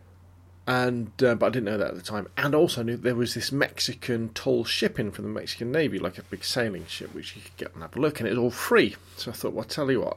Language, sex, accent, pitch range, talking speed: English, male, British, 95-120 Hz, 295 wpm